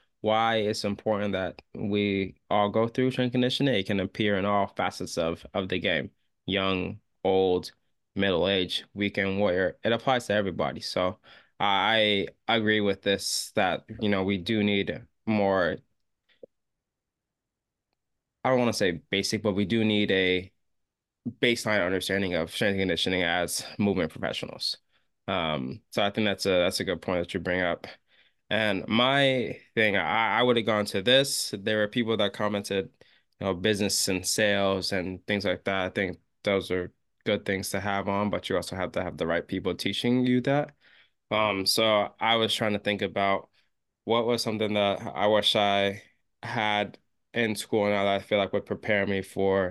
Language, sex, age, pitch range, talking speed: English, male, 20-39, 95-110 Hz, 180 wpm